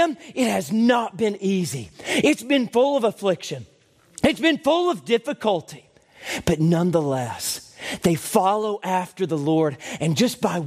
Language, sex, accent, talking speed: English, male, American, 140 wpm